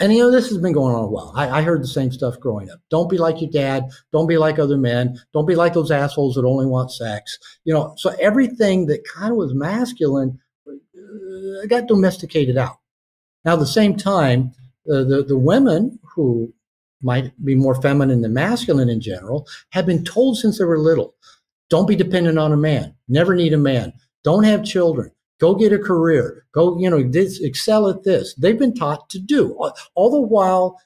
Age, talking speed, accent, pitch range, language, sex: 50-69, 210 wpm, American, 130-175 Hz, English, male